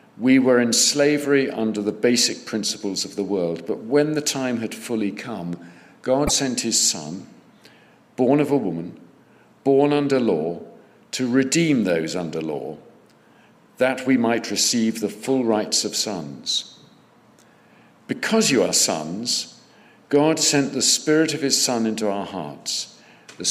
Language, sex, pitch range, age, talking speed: English, male, 105-140 Hz, 50-69, 150 wpm